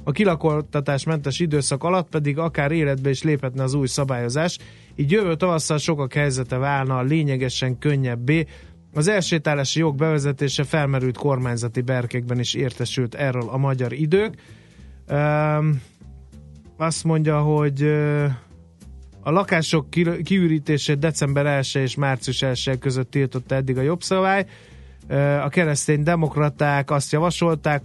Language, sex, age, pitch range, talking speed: Hungarian, male, 30-49, 125-150 Hz, 125 wpm